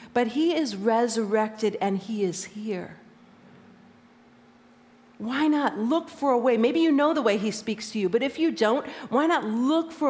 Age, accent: 40-59, American